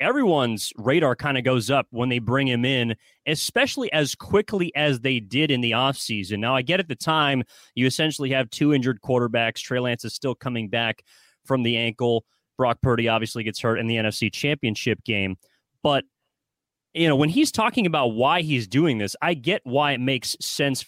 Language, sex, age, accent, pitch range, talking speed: English, male, 30-49, American, 125-155 Hz, 195 wpm